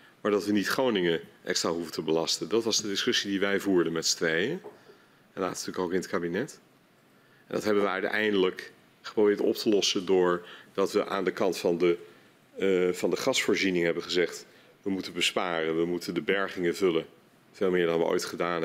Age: 40-59